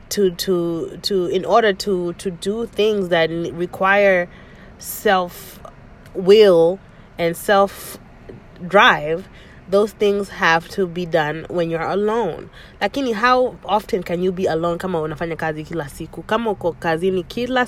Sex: female